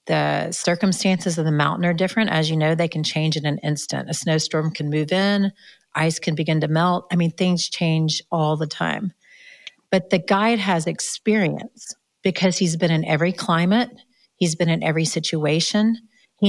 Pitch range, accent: 165-200 Hz, American